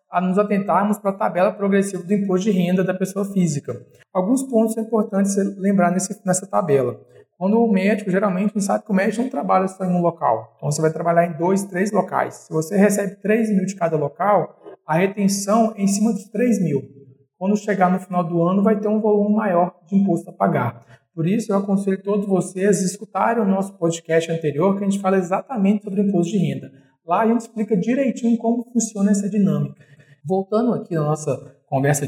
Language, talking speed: Portuguese, 210 wpm